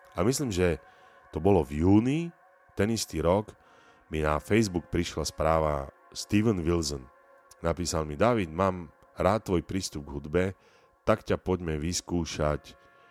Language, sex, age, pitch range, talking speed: Slovak, male, 40-59, 75-90 Hz, 135 wpm